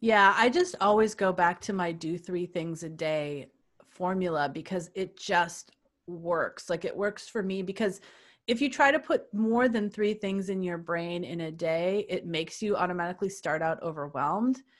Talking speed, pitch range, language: 185 wpm, 175-225 Hz, English